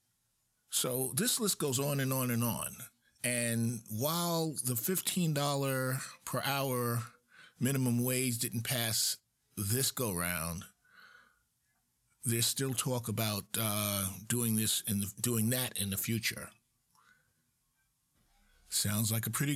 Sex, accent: male, American